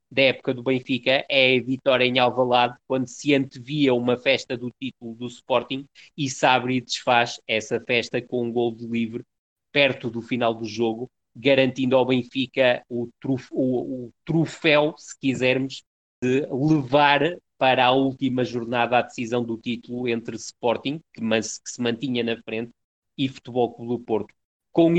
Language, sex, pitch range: Portuguese, male, 120-140 Hz